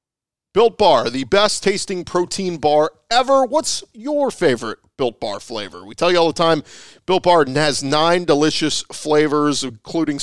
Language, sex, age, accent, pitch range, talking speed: English, male, 40-59, American, 130-170 Hz, 160 wpm